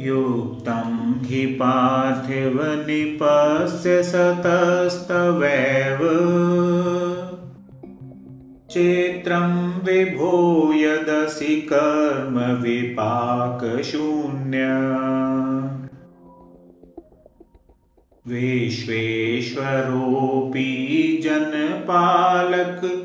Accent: native